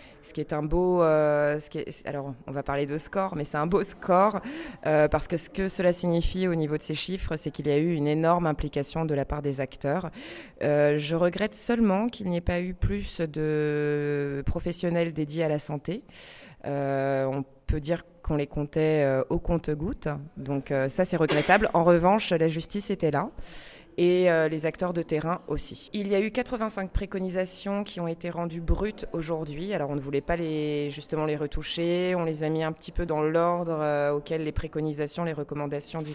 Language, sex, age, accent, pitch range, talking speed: French, female, 20-39, French, 145-175 Hz, 210 wpm